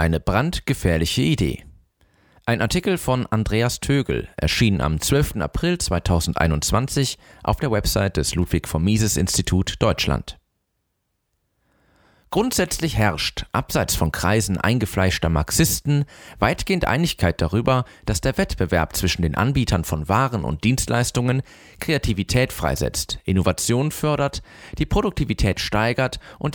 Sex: male